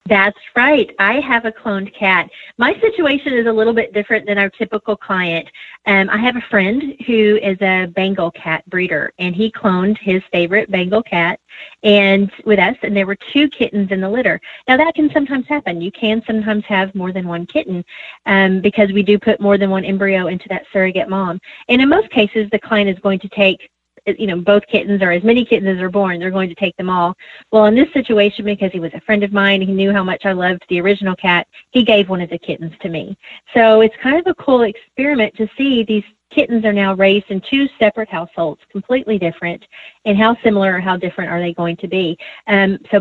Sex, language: female, English